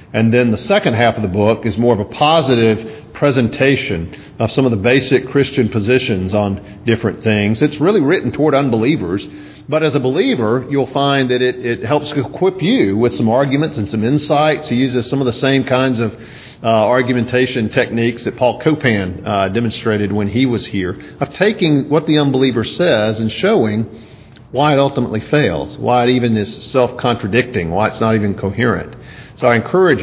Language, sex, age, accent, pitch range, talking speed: English, male, 50-69, American, 110-135 Hz, 185 wpm